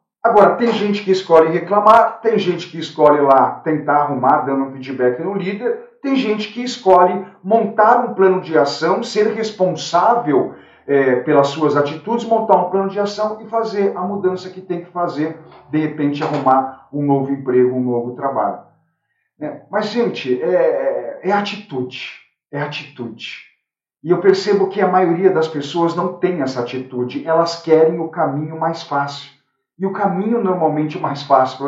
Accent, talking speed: Brazilian, 165 wpm